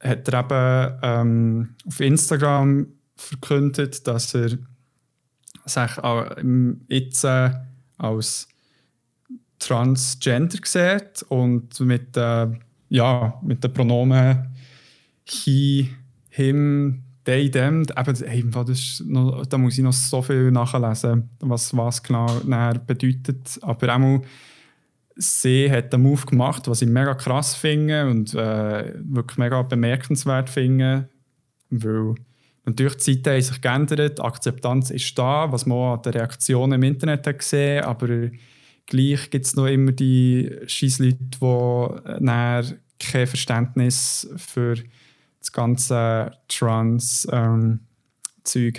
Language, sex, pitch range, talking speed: German, male, 120-135 Hz, 110 wpm